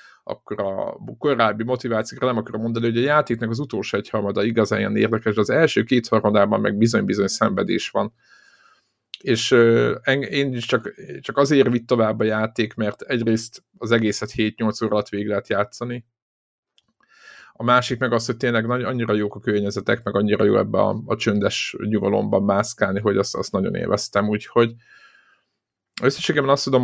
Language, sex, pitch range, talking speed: Hungarian, male, 110-125 Hz, 165 wpm